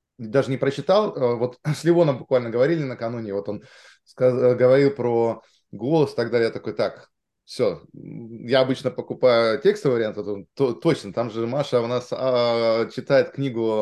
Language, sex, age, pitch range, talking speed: Russian, male, 20-39, 105-135 Hz, 155 wpm